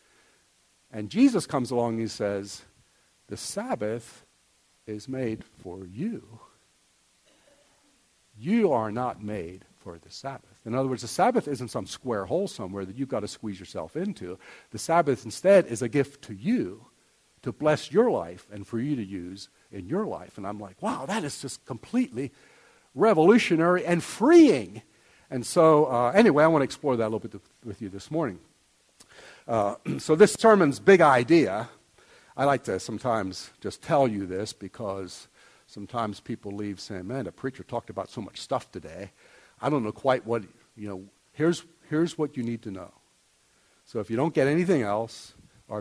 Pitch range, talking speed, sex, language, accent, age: 100-150 Hz, 175 wpm, male, English, American, 50-69